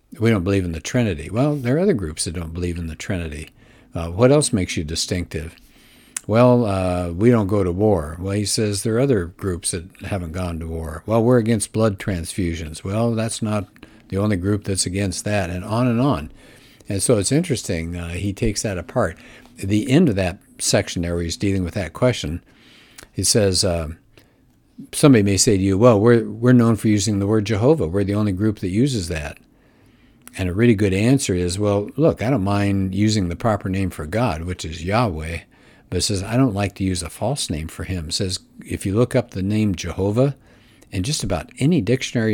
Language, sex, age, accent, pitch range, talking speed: English, male, 60-79, American, 90-115 Hz, 215 wpm